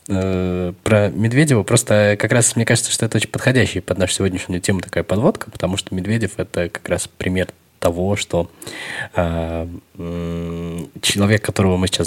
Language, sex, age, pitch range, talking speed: Russian, male, 20-39, 85-100 Hz, 160 wpm